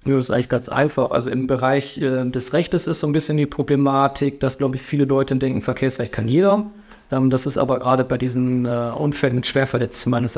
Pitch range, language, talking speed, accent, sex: 130-145 Hz, German, 225 wpm, German, male